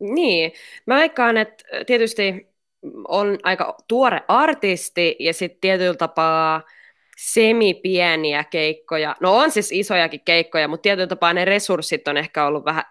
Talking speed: 135 wpm